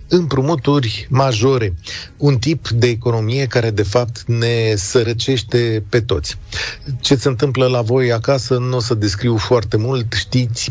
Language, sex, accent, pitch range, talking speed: Romanian, male, native, 110-145 Hz, 145 wpm